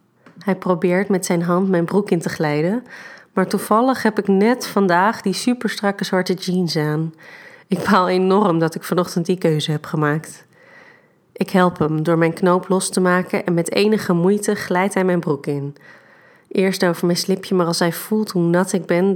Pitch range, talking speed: 175-195 Hz, 190 wpm